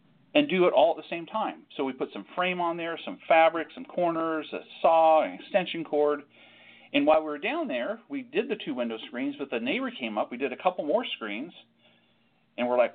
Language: English